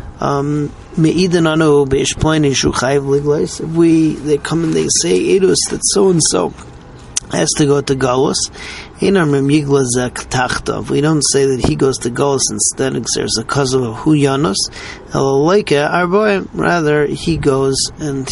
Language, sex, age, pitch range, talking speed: English, male, 40-59, 135-160 Hz, 120 wpm